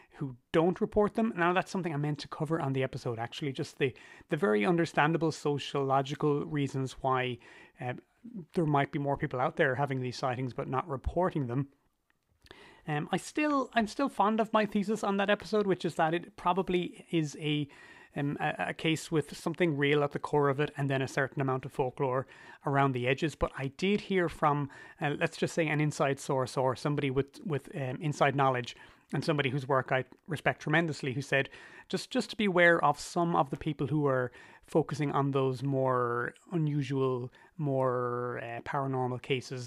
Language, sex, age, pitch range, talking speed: English, male, 30-49, 135-175 Hz, 195 wpm